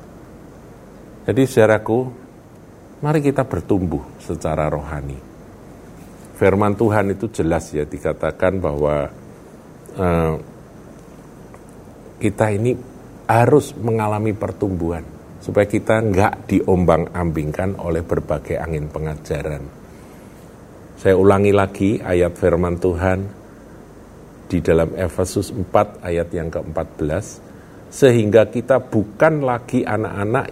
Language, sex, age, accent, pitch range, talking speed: Indonesian, male, 50-69, native, 80-105 Hz, 90 wpm